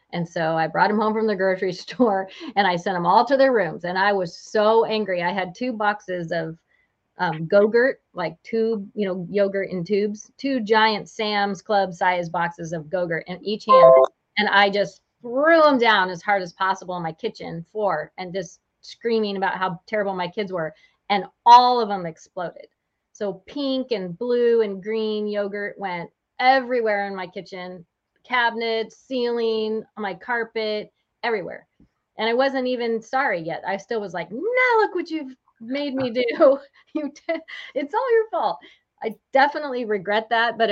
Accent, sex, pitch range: American, female, 180-235 Hz